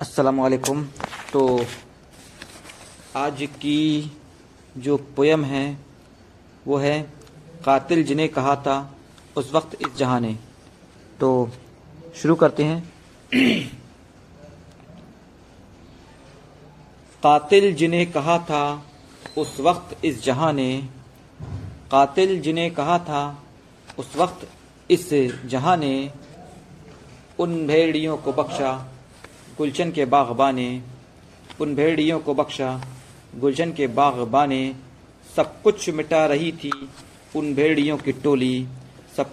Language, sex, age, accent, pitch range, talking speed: Hindi, male, 50-69, native, 130-155 Hz, 95 wpm